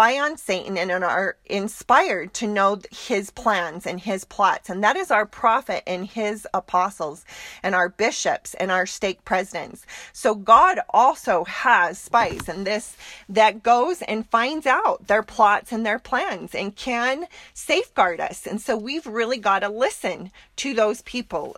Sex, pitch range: female, 185-230 Hz